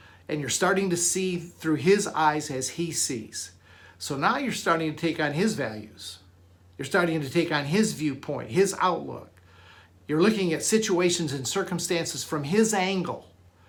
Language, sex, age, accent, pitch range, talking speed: English, male, 50-69, American, 145-180 Hz, 165 wpm